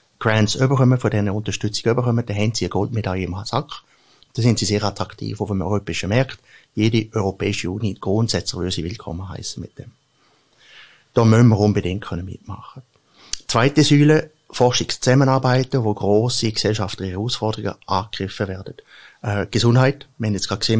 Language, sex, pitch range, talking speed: German, male, 105-125 Hz, 155 wpm